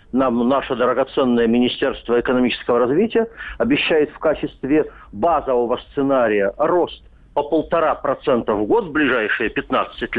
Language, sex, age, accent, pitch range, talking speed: Russian, male, 50-69, native, 125-165 Hz, 110 wpm